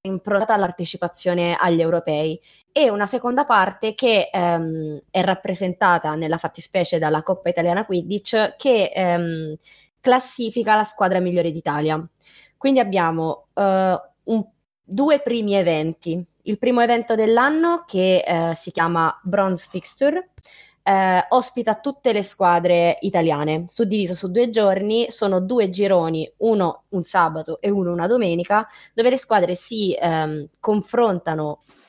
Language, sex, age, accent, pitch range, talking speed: Italian, female, 20-39, native, 170-220 Hz, 125 wpm